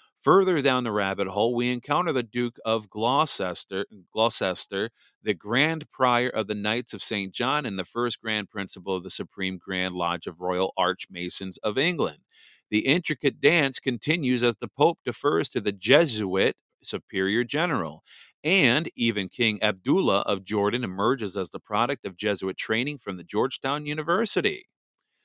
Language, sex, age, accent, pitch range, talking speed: English, male, 40-59, American, 100-135 Hz, 155 wpm